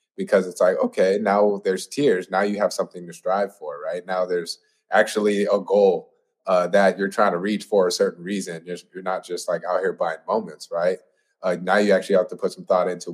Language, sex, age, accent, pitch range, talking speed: Filipino, male, 20-39, American, 90-105 Hz, 230 wpm